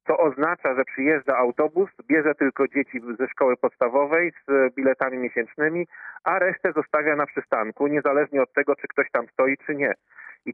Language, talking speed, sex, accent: Polish, 165 wpm, male, native